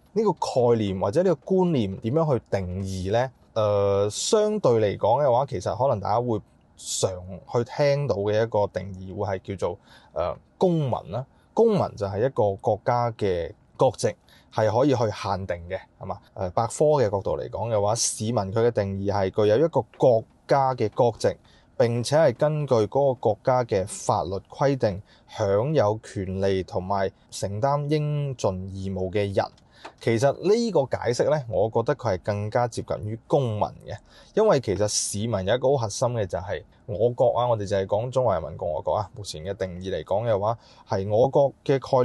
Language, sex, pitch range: Chinese, male, 100-135 Hz